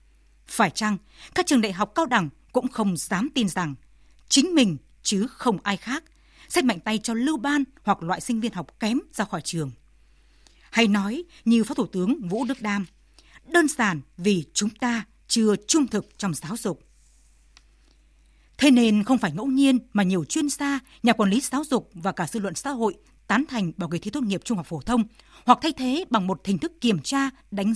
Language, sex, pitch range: Vietnamese, female, 185-260 Hz